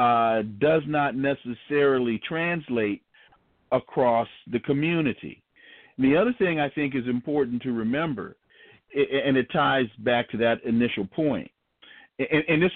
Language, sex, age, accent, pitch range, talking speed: English, male, 50-69, American, 125-170 Hz, 125 wpm